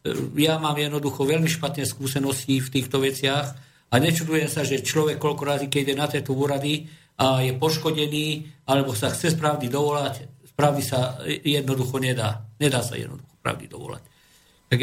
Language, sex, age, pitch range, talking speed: Slovak, male, 50-69, 140-160 Hz, 160 wpm